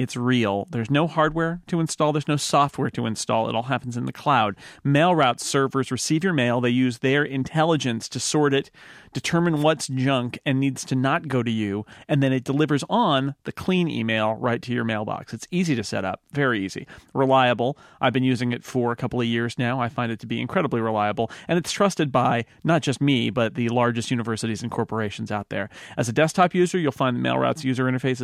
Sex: male